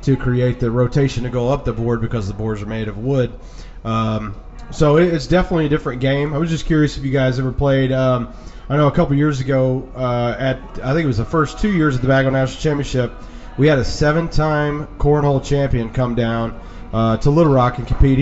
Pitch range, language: 120-140 Hz, English